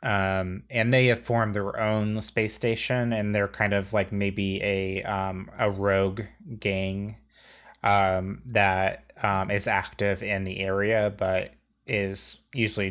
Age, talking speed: 30-49, 145 wpm